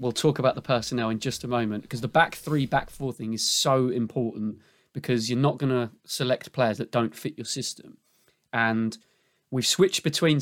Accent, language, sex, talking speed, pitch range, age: British, English, male, 200 wpm, 115-145 Hz, 20-39